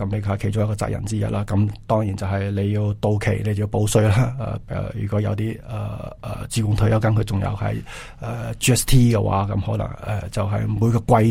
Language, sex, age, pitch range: Chinese, male, 20-39, 105-115 Hz